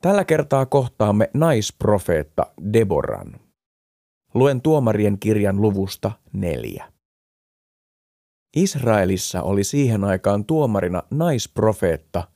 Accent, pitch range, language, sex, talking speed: native, 95-125 Hz, Finnish, male, 80 wpm